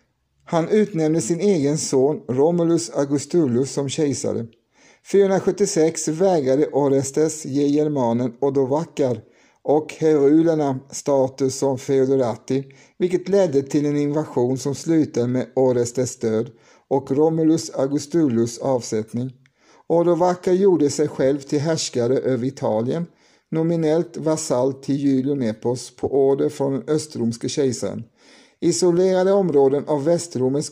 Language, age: Swedish, 60-79